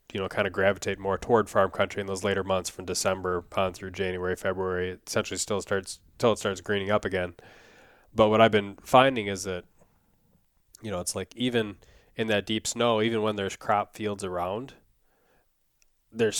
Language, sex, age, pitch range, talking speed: English, male, 20-39, 95-105 Hz, 185 wpm